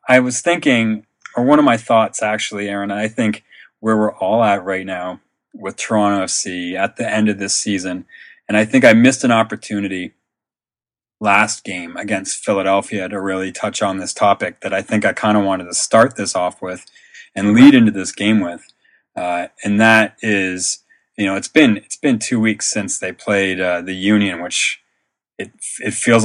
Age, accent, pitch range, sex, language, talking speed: 30-49, American, 95-110 Hz, male, English, 190 wpm